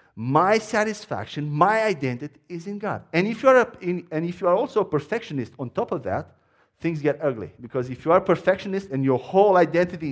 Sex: male